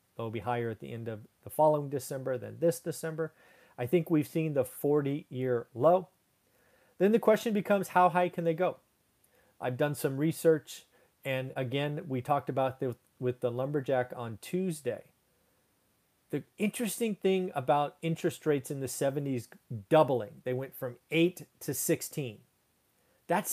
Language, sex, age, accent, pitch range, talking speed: English, male, 40-59, American, 125-170 Hz, 155 wpm